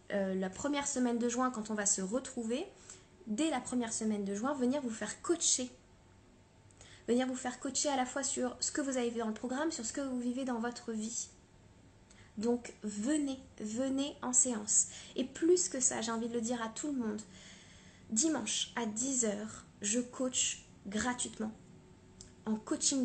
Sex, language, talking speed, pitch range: female, French, 185 wpm, 220-260 Hz